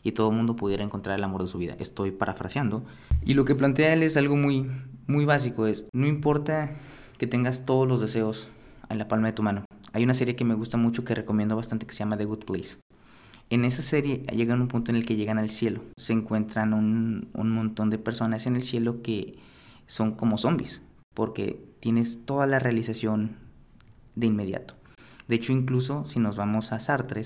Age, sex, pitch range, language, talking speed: 30-49, male, 110-125 Hz, English, 205 wpm